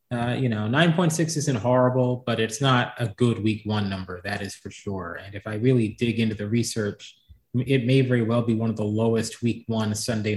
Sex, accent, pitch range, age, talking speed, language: male, American, 110-135 Hz, 30-49, 220 wpm, English